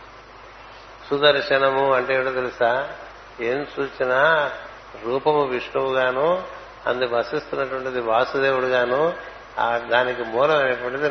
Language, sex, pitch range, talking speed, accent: Telugu, male, 125-140 Hz, 70 wpm, native